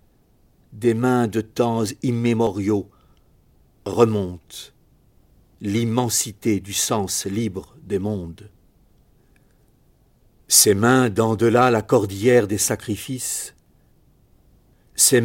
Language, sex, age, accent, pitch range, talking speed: French, male, 60-79, French, 105-130 Hz, 80 wpm